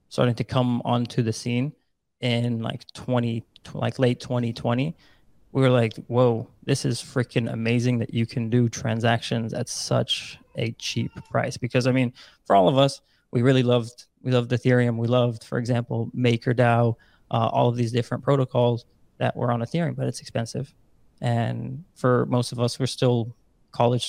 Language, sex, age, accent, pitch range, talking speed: English, male, 20-39, American, 115-125 Hz, 170 wpm